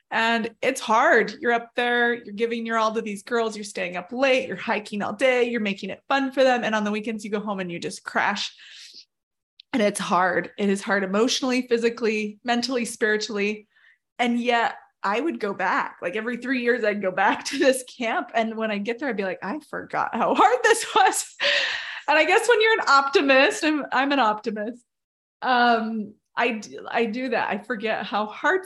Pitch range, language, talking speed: 215-265 Hz, English, 205 wpm